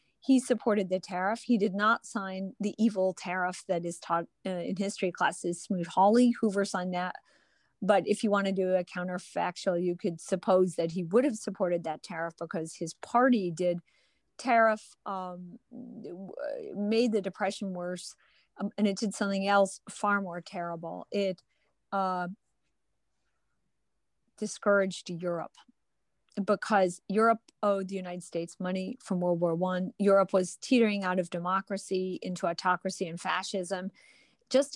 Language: English